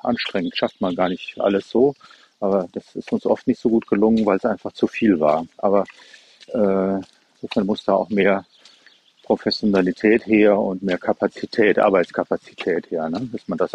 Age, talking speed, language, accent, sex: 50-69, 175 wpm, German, German, male